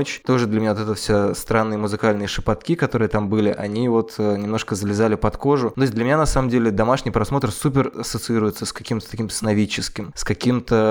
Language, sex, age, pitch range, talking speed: Russian, male, 20-39, 105-120 Hz, 185 wpm